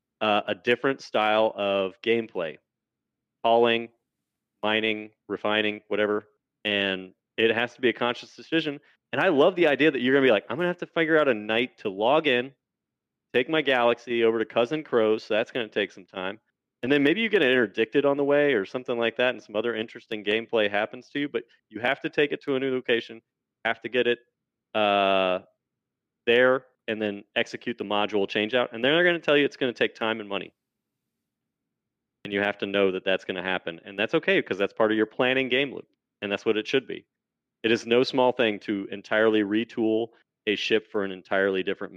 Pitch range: 105-130 Hz